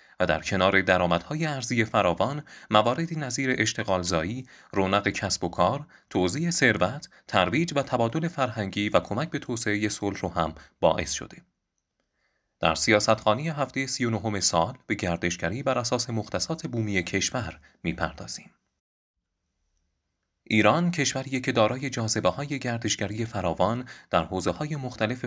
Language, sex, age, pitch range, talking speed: Persian, male, 30-49, 90-125 Hz, 130 wpm